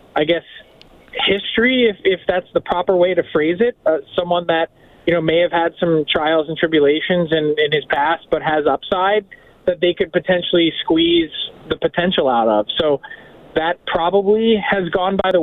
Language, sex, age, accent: English, male, 20-39, American